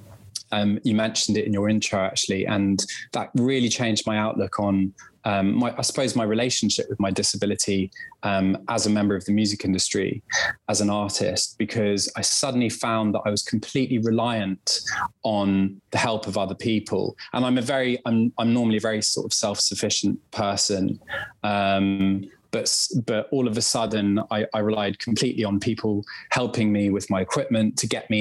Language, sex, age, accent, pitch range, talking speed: English, male, 20-39, British, 100-115 Hz, 180 wpm